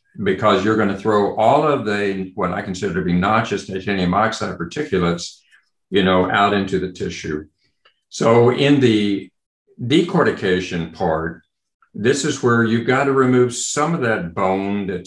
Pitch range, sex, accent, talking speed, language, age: 95-125 Hz, male, American, 165 wpm, English, 60-79